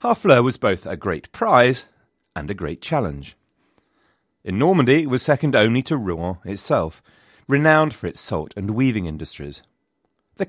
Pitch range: 85-140 Hz